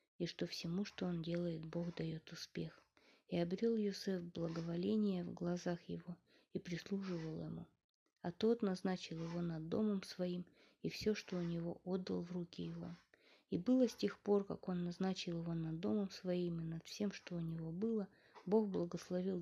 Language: Russian